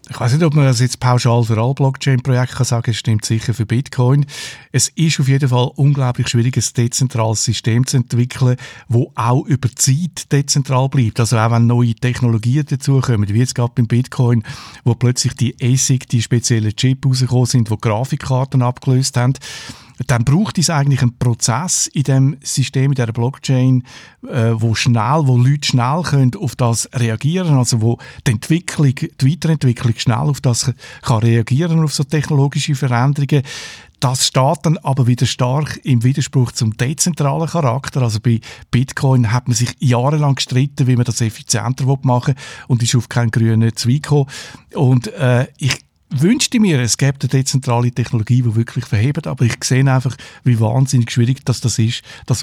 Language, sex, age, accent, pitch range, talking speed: German, male, 50-69, Austrian, 120-140 Hz, 175 wpm